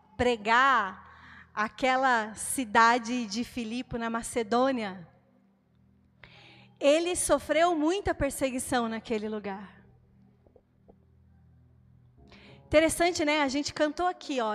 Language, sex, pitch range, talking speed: Portuguese, female, 205-285 Hz, 85 wpm